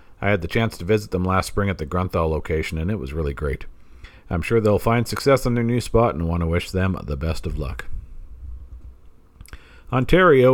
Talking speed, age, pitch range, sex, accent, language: 210 wpm, 50-69, 80-115 Hz, male, American, English